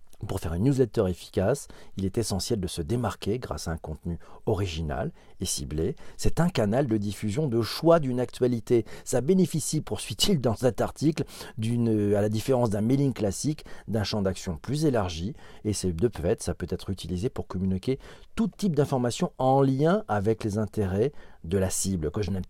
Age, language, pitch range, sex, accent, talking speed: 40-59, French, 100-145 Hz, male, French, 185 wpm